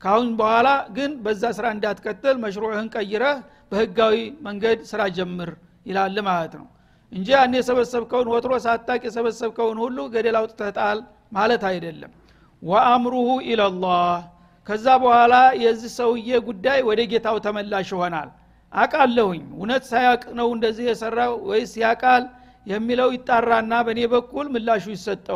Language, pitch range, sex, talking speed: Amharic, 210-250 Hz, male, 105 wpm